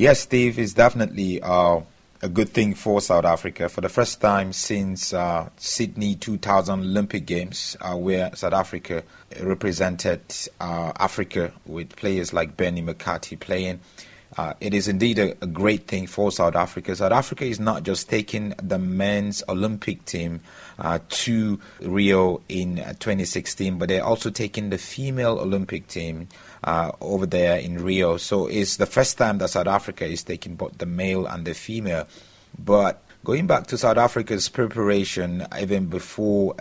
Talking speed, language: 160 wpm, English